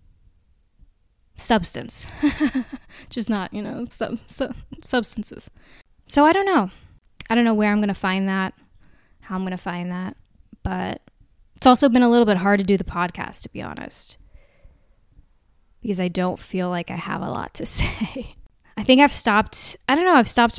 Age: 10-29